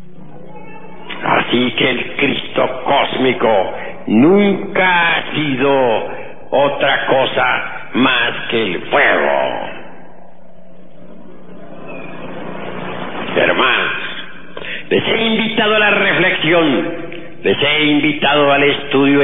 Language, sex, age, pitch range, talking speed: Spanish, male, 60-79, 125-180 Hz, 80 wpm